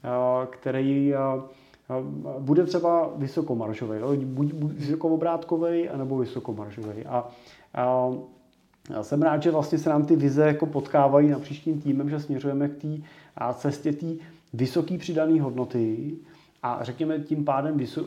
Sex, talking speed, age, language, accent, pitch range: male, 135 wpm, 30-49, Czech, native, 125-145 Hz